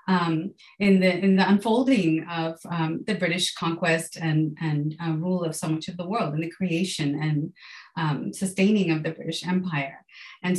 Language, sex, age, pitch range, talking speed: English, female, 30-49, 170-200 Hz, 180 wpm